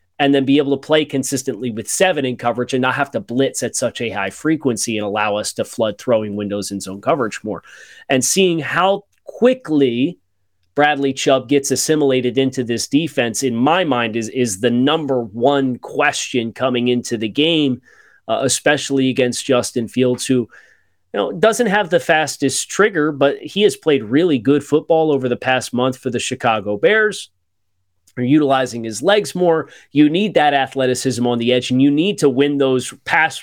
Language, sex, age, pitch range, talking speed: English, male, 30-49, 120-145 Hz, 185 wpm